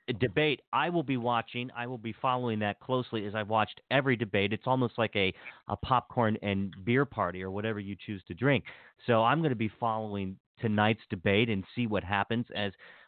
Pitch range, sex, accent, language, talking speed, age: 105-125 Hz, male, American, English, 205 wpm, 40-59